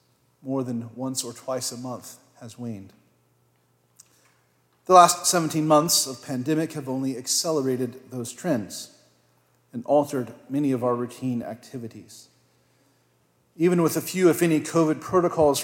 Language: English